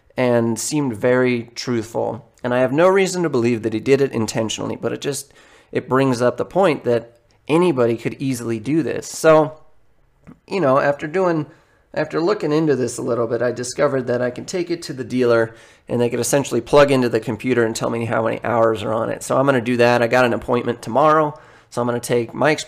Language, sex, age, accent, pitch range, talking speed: English, male, 30-49, American, 115-135 Hz, 230 wpm